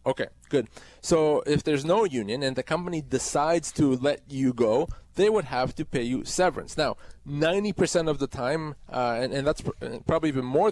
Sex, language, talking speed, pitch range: male, English, 190 wpm, 130-160 Hz